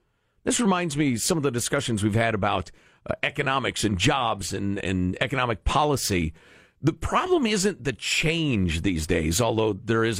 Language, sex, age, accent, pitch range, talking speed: English, male, 50-69, American, 115-180 Hz, 165 wpm